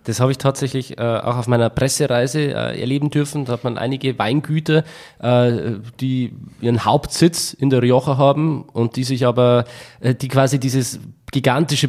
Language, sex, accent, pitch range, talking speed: German, male, German, 115-135 Hz, 170 wpm